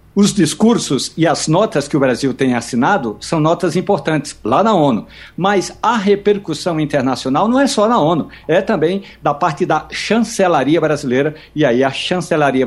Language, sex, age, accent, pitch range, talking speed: Portuguese, male, 60-79, Brazilian, 145-195 Hz, 170 wpm